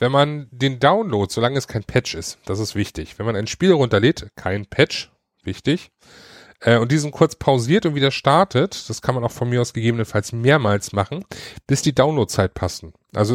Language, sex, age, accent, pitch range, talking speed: German, male, 30-49, German, 105-130 Hz, 195 wpm